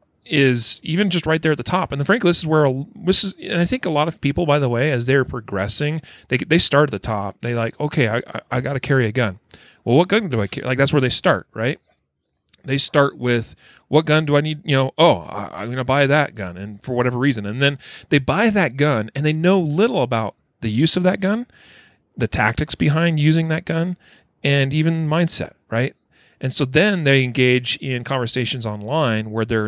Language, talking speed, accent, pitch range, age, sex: English, 235 wpm, American, 115-155 Hz, 30-49, male